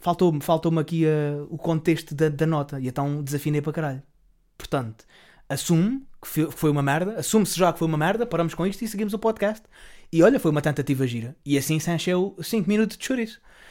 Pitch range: 145-185 Hz